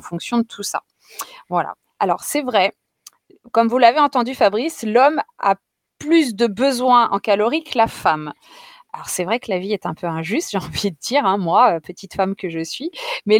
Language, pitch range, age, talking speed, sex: French, 185-250 Hz, 20-39, 200 wpm, female